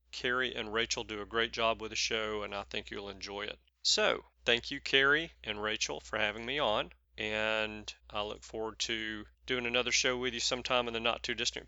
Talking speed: 215 wpm